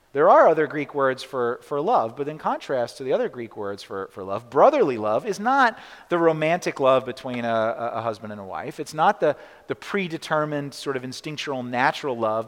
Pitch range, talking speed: 145-200 Hz, 205 wpm